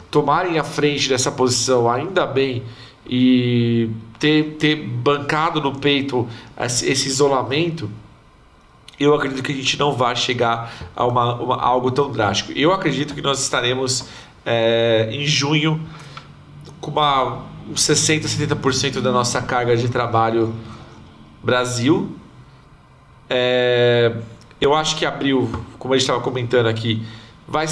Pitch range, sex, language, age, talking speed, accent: 115-145 Hz, male, Portuguese, 40-59, 140 wpm, Brazilian